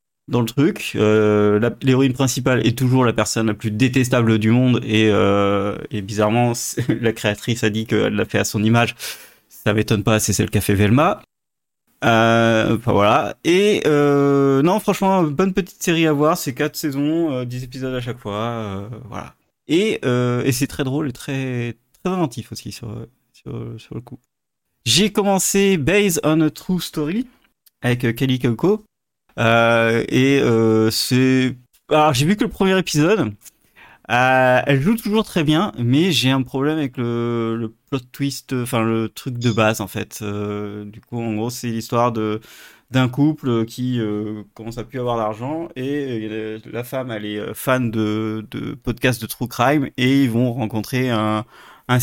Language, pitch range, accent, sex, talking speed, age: French, 110-140 Hz, French, male, 180 wpm, 30-49